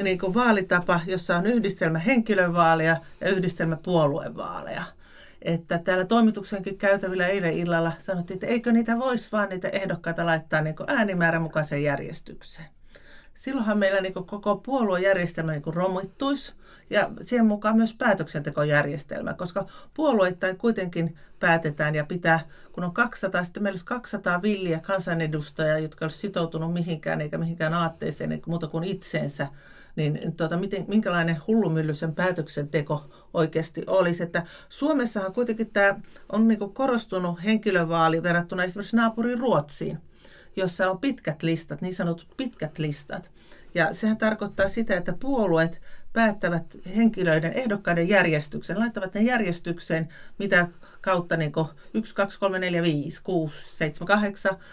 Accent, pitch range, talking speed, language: native, 165-205 Hz, 135 wpm, Finnish